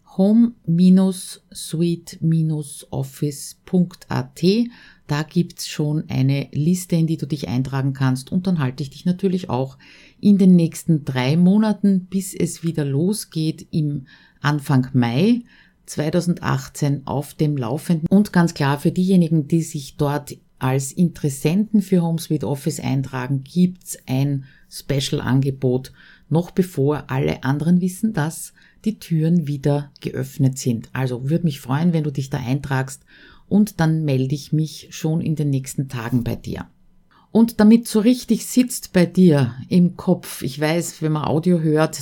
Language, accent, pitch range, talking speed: German, Austrian, 145-180 Hz, 145 wpm